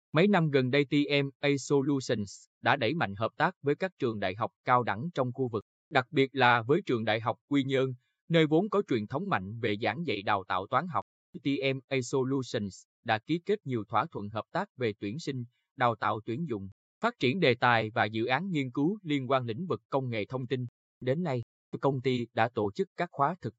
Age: 20-39